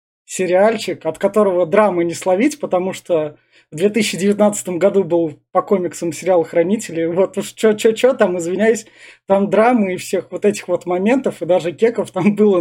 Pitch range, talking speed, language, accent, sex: 160-200 Hz, 160 wpm, Russian, native, male